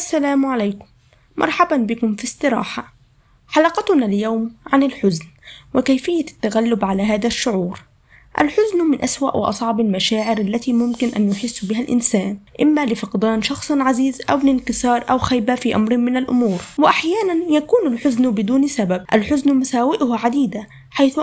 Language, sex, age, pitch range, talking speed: Arabic, female, 20-39, 215-270 Hz, 135 wpm